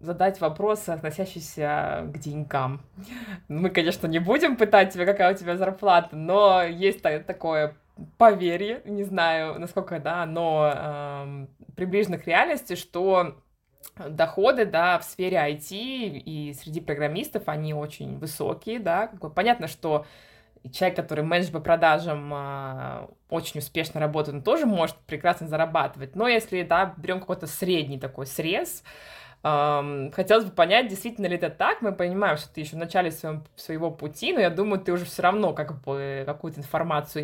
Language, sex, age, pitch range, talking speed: Russian, female, 20-39, 150-195 Hz, 145 wpm